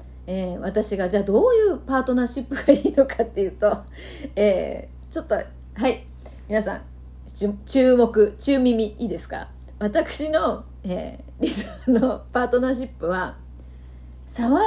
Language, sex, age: Japanese, female, 30-49